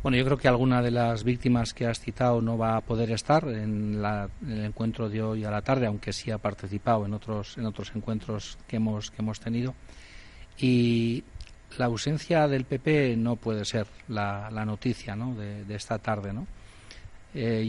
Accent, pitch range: Spanish, 105-125 Hz